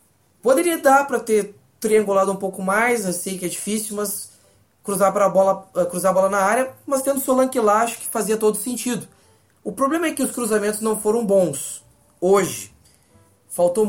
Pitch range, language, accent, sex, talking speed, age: 160-220 Hz, Portuguese, Brazilian, male, 180 wpm, 20-39